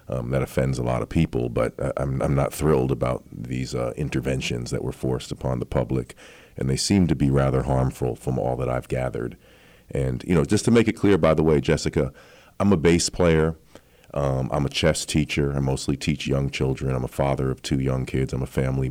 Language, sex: English, male